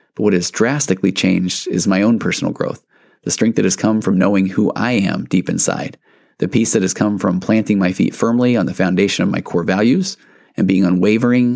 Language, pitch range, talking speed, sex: English, 95-115 Hz, 220 wpm, male